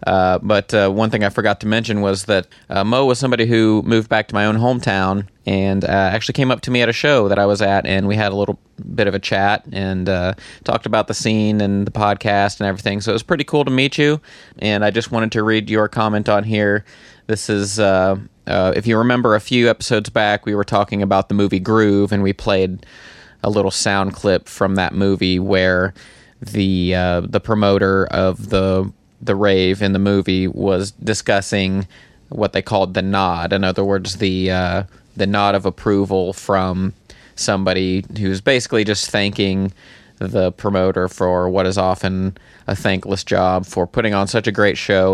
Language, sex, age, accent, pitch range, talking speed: English, male, 30-49, American, 95-110 Hz, 200 wpm